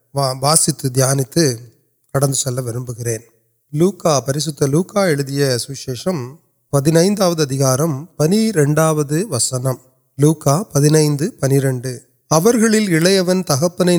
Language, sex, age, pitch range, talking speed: Urdu, male, 30-49, 135-170 Hz, 70 wpm